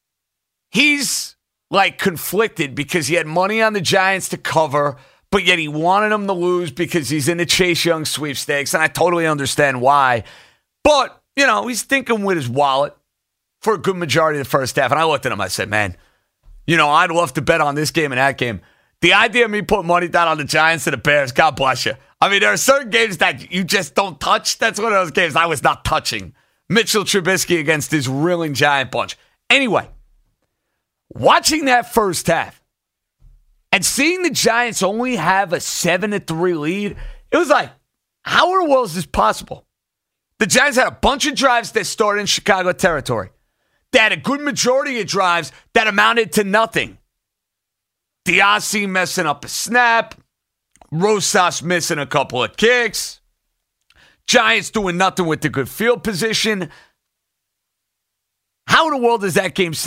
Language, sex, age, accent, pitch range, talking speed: English, male, 40-59, American, 145-215 Hz, 185 wpm